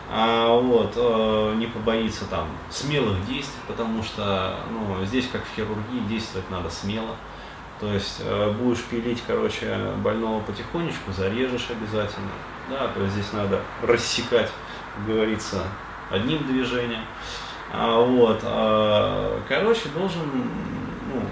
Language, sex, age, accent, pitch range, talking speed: Russian, male, 20-39, native, 100-120 Hz, 125 wpm